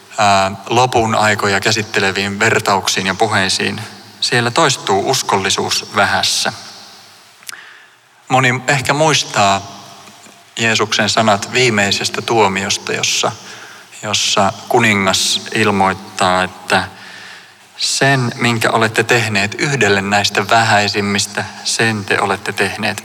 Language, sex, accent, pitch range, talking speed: Finnish, male, native, 100-125 Hz, 85 wpm